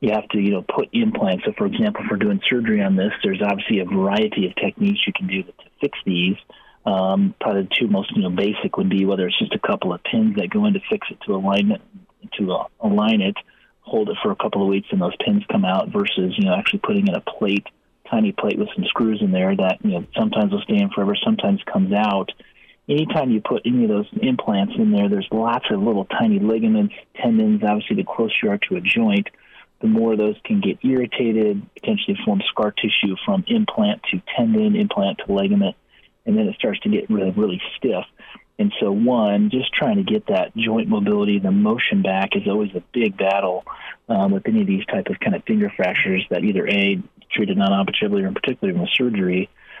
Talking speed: 225 wpm